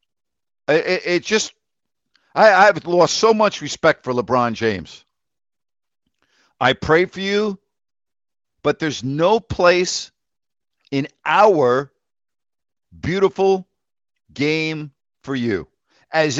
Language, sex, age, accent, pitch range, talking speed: English, male, 50-69, American, 135-175 Hz, 100 wpm